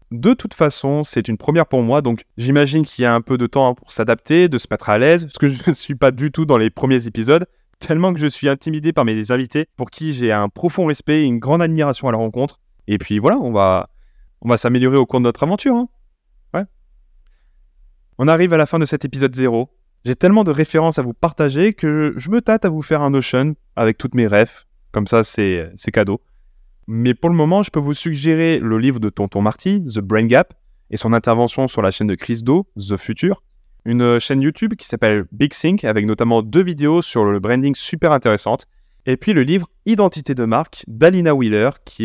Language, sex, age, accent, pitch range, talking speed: French, male, 20-39, French, 115-155 Hz, 225 wpm